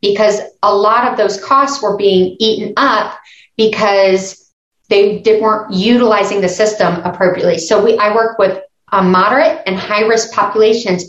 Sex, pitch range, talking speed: female, 195-240 Hz, 150 wpm